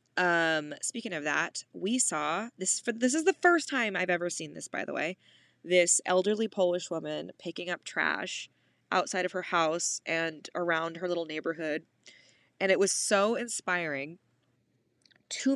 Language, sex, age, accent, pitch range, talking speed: English, female, 20-39, American, 160-195 Hz, 160 wpm